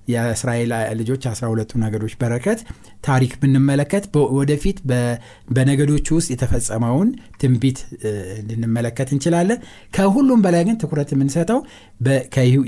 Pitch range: 120-165 Hz